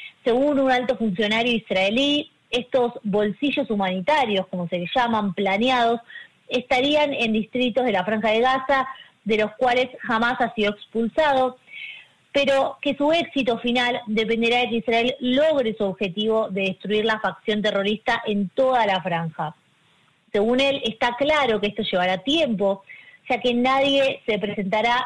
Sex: female